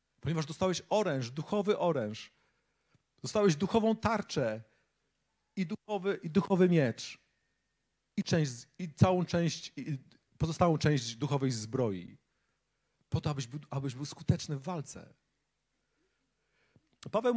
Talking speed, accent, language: 100 wpm, native, Polish